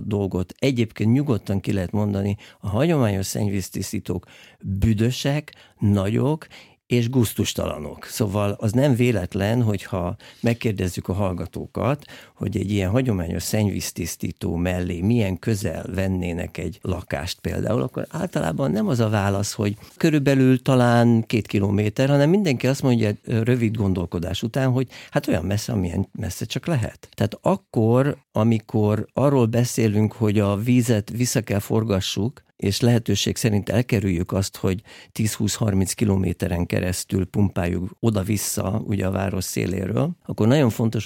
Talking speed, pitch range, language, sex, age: 130 wpm, 95-120 Hz, Hungarian, male, 50-69